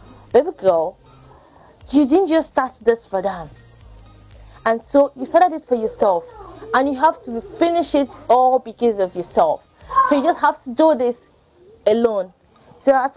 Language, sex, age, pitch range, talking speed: English, female, 20-39, 190-265 Hz, 165 wpm